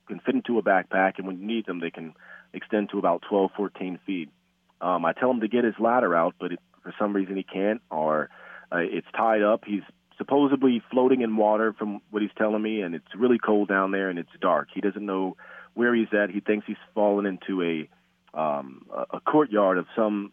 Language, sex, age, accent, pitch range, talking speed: English, male, 40-59, American, 95-110 Hz, 220 wpm